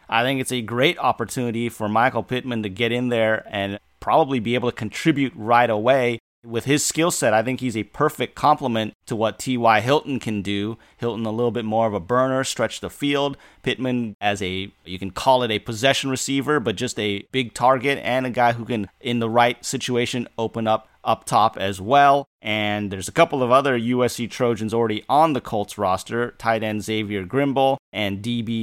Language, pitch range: English, 110-130 Hz